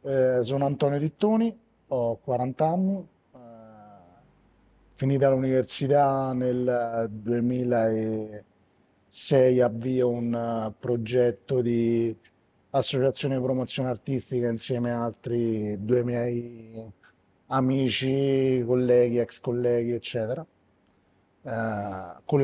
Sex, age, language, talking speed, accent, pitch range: male, 30-49, Italian, 85 wpm, native, 115-130 Hz